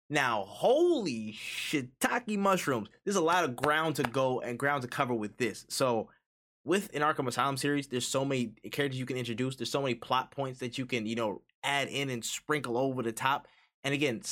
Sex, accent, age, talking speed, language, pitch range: male, American, 20-39, 205 wpm, English, 120-145 Hz